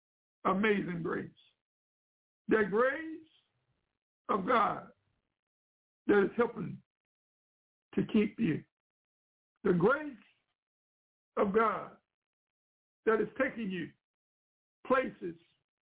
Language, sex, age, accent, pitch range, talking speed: English, male, 60-79, American, 190-230 Hz, 80 wpm